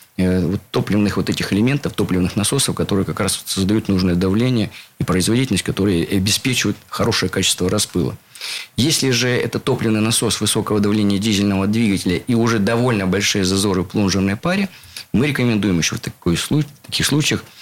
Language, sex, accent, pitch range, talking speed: Russian, male, native, 95-115 Hz, 150 wpm